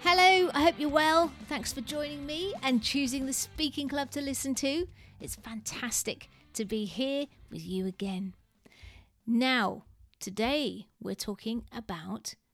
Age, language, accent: 40-59, English, British